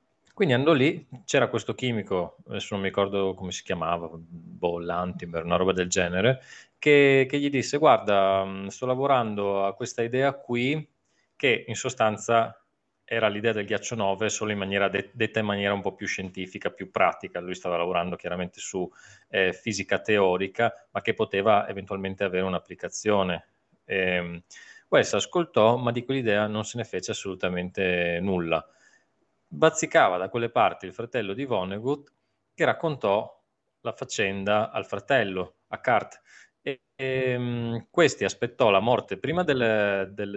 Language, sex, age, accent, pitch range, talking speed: Italian, male, 20-39, native, 95-120 Hz, 150 wpm